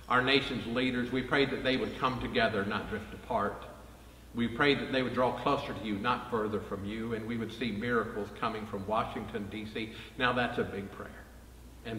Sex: male